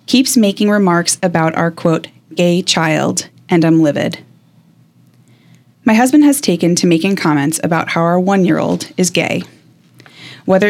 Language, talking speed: English, 140 wpm